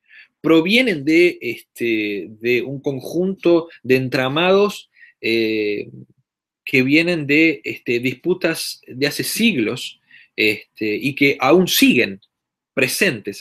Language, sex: Portuguese, male